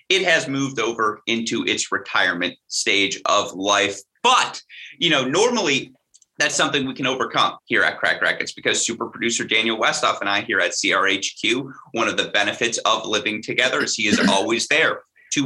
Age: 30-49